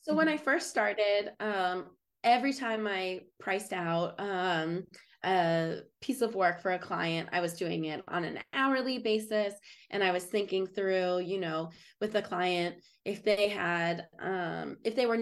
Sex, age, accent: female, 20-39, American